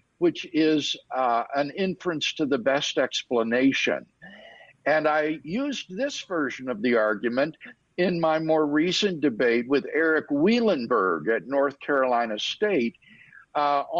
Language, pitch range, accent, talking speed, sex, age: English, 140-210 Hz, American, 130 wpm, male, 60-79